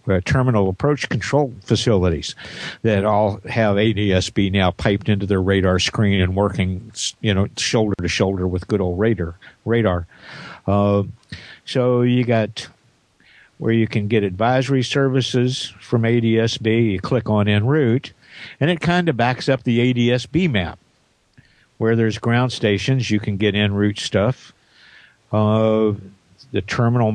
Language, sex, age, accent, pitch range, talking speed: English, male, 50-69, American, 100-125 Hz, 140 wpm